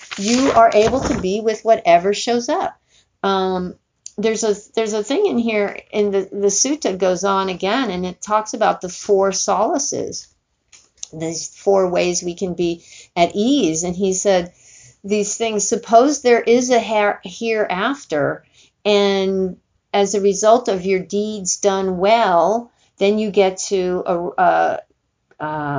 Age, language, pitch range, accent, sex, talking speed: 50-69, English, 170-215 Hz, American, female, 155 wpm